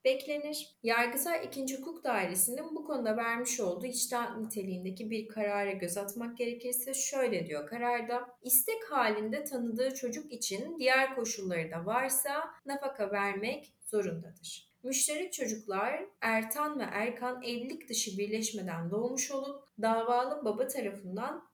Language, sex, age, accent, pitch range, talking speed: Turkish, female, 30-49, native, 195-260 Hz, 120 wpm